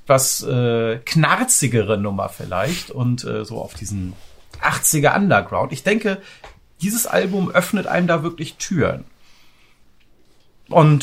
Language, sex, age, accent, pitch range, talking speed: German, male, 40-59, German, 125-180 Hz, 110 wpm